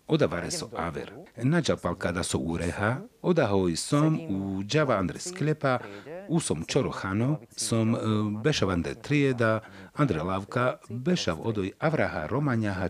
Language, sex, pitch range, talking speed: Slovak, male, 95-135 Hz, 115 wpm